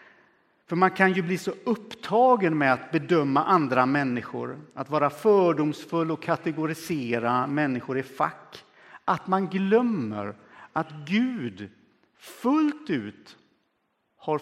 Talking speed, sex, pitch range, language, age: 115 wpm, male, 125-185 Hz, Swedish, 50-69